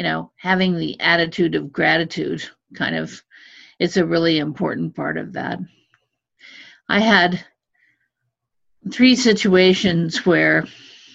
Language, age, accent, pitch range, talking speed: English, 50-69, American, 170-200 Hz, 110 wpm